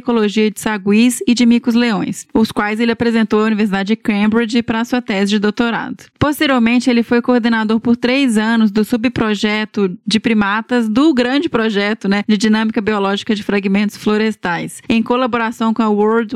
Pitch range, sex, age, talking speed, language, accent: 210-245 Hz, female, 20-39, 170 wpm, Portuguese, Brazilian